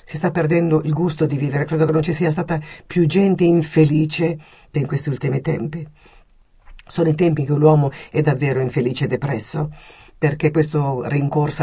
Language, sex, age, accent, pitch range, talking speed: Italian, female, 50-69, native, 140-160 Hz, 175 wpm